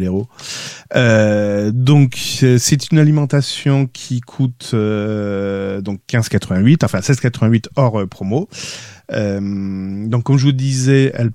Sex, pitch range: male, 110-145 Hz